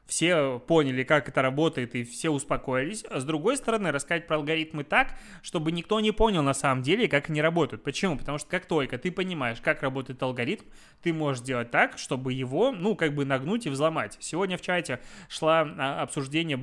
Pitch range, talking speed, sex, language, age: 135-175 Hz, 190 wpm, male, Russian, 20-39